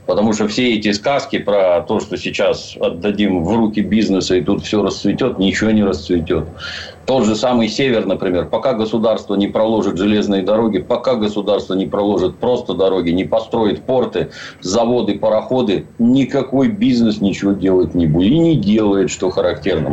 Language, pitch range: Russian, 95-120 Hz